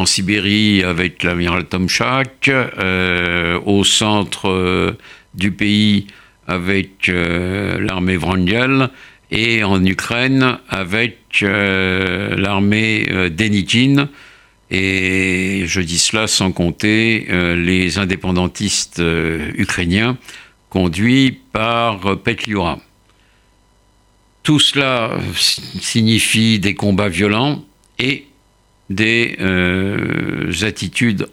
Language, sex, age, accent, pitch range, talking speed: French, male, 60-79, French, 95-110 Hz, 90 wpm